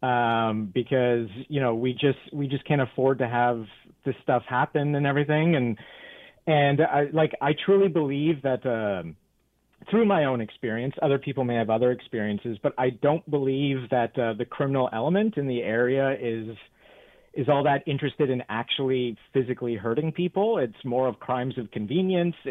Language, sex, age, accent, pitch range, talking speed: English, male, 40-59, American, 120-145 Hz, 170 wpm